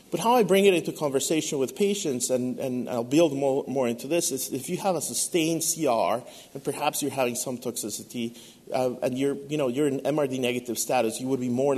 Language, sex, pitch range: English, male, 115-150 Hz